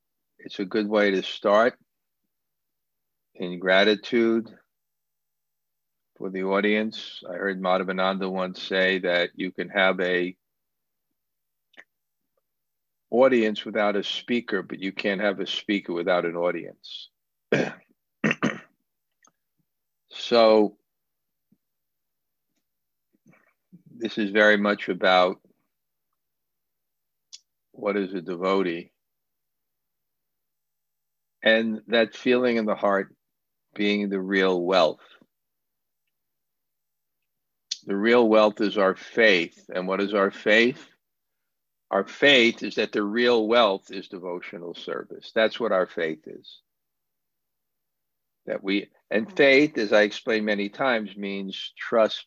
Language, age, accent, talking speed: English, 50-69, American, 105 wpm